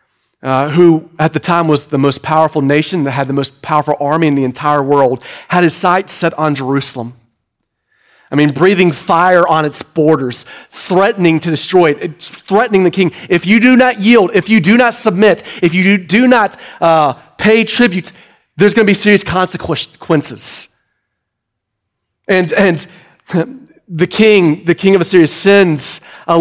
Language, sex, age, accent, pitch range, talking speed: English, male, 30-49, American, 155-225 Hz, 165 wpm